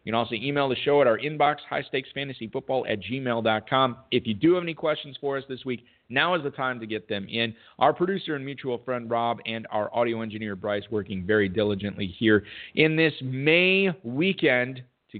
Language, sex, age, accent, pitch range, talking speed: English, male, 40-59, American, 105-145 Hz, 200 wpm